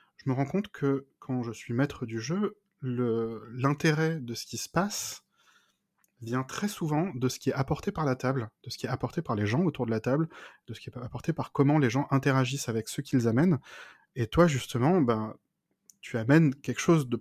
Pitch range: 120-165 Hz